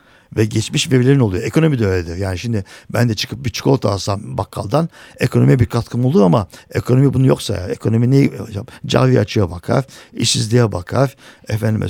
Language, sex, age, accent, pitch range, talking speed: Turkish, male, 60-79, native, 105-125 Hz, 165 wpm